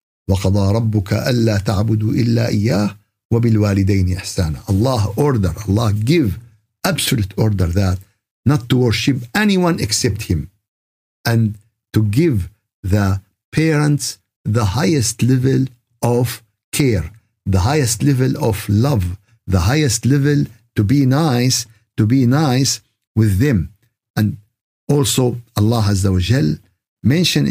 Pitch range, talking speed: 105-130 Hz, 120 wpm